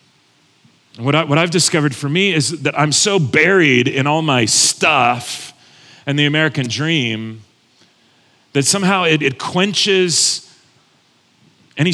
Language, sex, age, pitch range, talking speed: English, male, 40-59, 140-180 Hz, 125 wpm